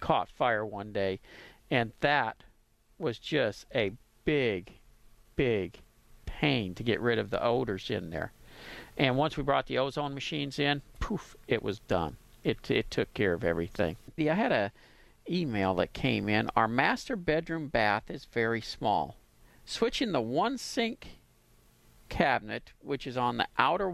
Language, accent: English, American